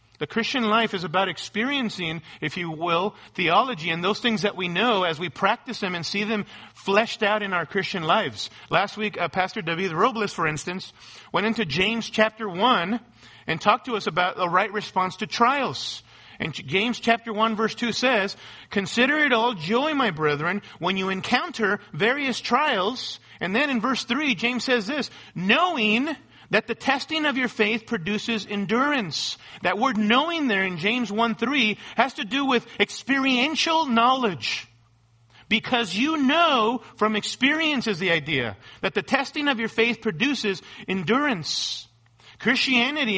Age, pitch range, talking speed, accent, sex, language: 40-59, 185-245 Hz, 165 wpm, American, male, English